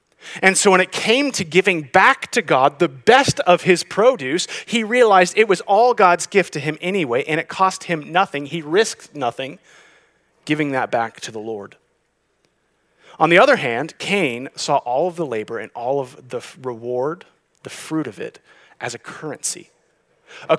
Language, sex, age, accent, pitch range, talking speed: English, male, 30-49, American, 155-215 Hz, 180 wpm